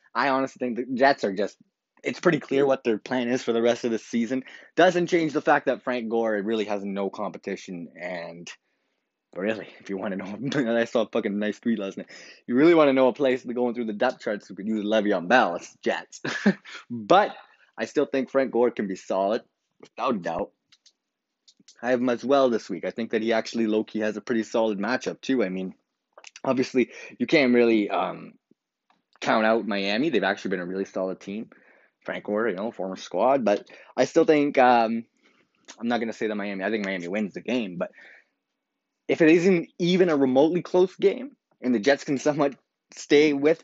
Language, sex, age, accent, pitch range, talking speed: English, male, 20-39, American, 105-140 Hz, 210 wpm